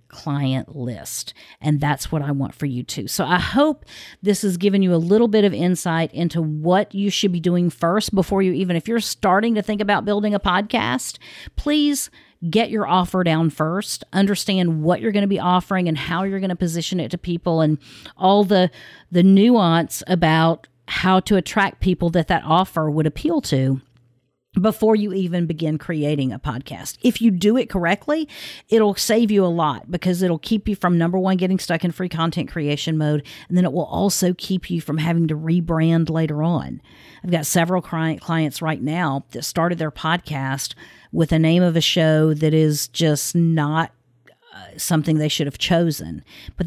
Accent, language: American, English